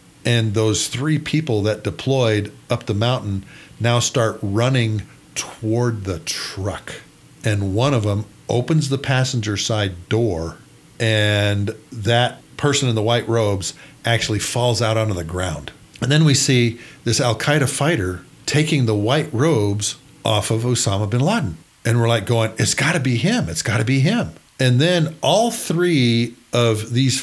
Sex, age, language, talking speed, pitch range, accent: male, 50-69, English, 165 wpm, 105-130 Hz, American